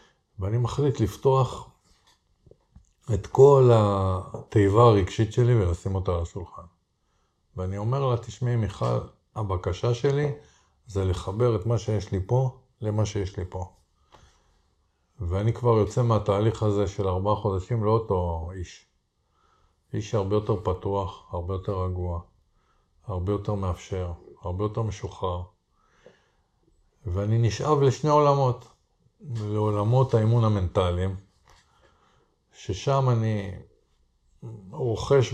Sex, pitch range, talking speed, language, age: male, 95-120 Hz, 105 wpm, Hebrew, 50-69